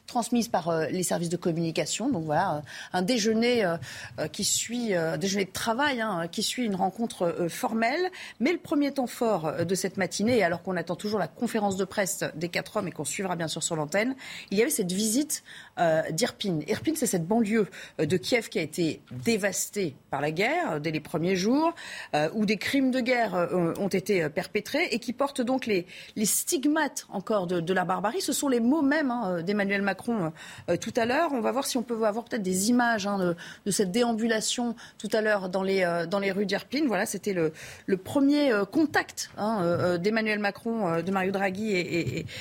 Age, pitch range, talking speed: 30-49, 180-240 Hz, 200 wpm